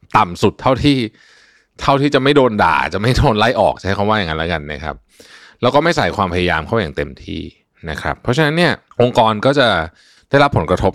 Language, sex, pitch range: Thai, male, 90-115 Hz